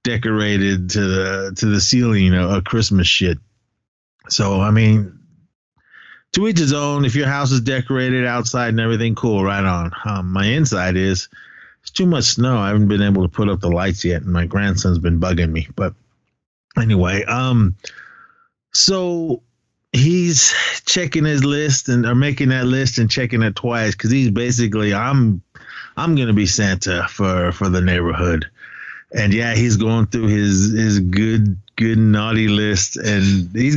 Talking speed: 170 wpm